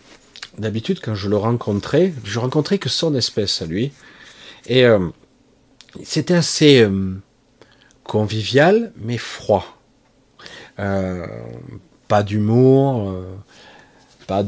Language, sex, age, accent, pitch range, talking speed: French, male, 40-59, French, 90-115 Hz, 105 wpm